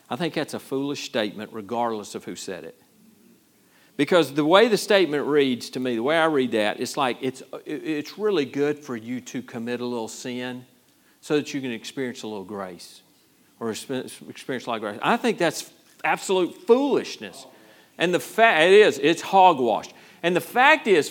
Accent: American